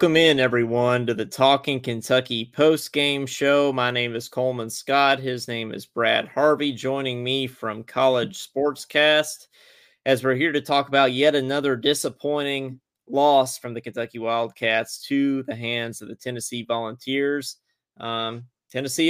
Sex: male